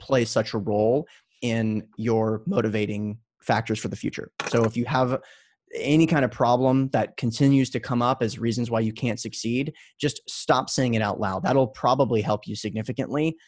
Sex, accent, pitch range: male, American, 105-125 Hz